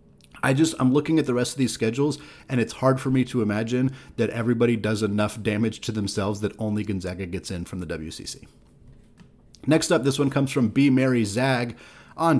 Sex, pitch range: male, 110-135 Hz